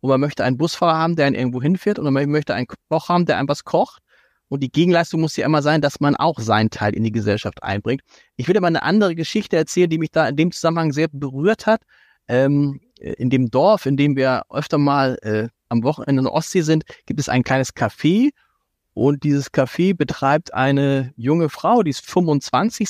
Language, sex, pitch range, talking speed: German, male, 135-185 Hz, 220 wpm